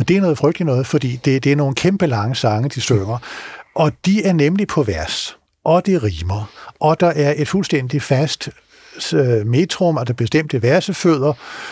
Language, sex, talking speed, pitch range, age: Danish, male, 185 wpm, 120-155 Hz, 60-79